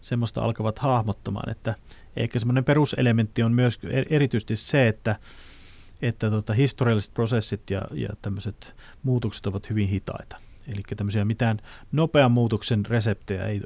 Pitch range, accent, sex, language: 105-125 Hz, native, male, Finnish